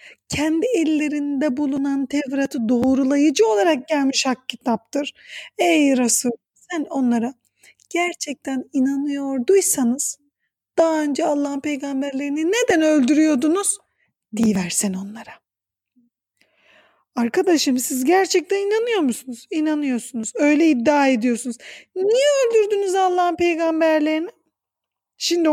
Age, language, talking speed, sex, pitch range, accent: 40-59, Turkish, 85 wpm, female, 245-340 Hz, native